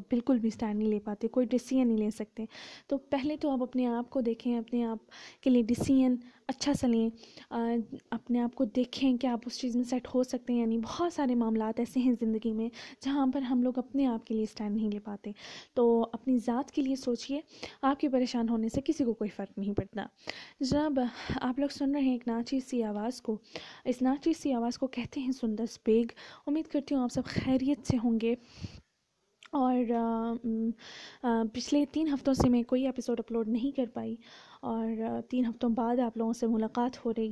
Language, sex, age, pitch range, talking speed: Urdu, female, 10-29, 230-265 Hz, 210 wpm